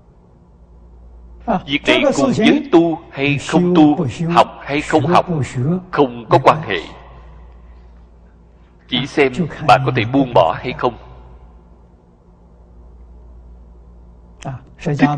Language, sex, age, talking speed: Vietnamese, male, 60-79, 105 wpm